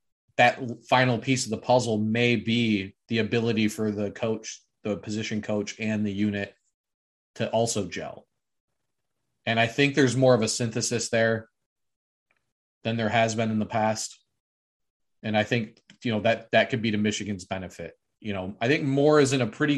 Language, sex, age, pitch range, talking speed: English, male, 30-49, 105-115 Hz, 180 wpm